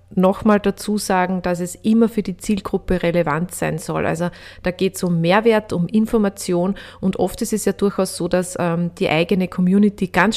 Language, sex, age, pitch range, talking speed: German, female, 30-49, 170-195 Hz, 190 wpm